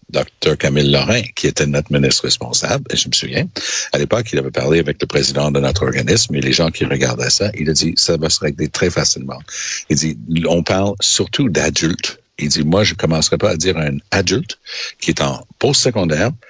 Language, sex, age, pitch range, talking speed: French, male, 60-79, 75-95 Hz, 215 wpm